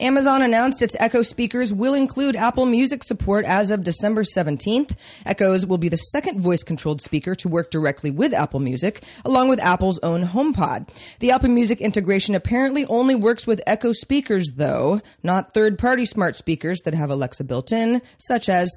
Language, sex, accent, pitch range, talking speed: English, female, American, 170-235 Hz, 175 wpm